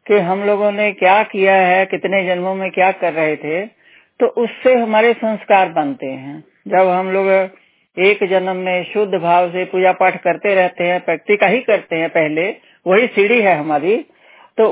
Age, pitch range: 60-79, 180-230 Hz